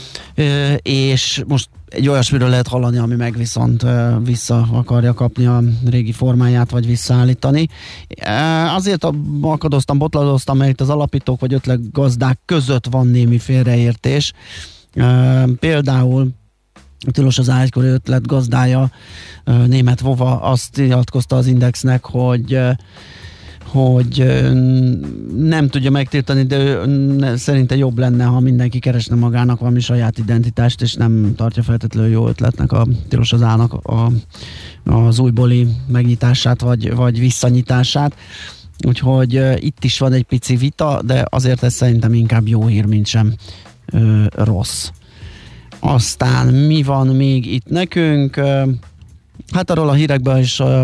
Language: Hungarian